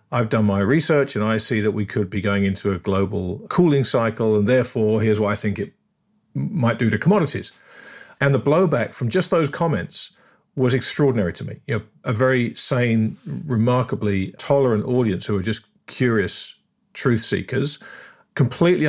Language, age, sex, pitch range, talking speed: English, 50-69, male, 110-140 Hz, 170 wpm